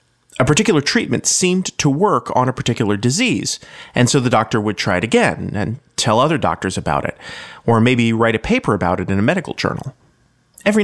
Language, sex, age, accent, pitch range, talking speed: English, male, 30-49, American, 110-165 Hz, 200 wpm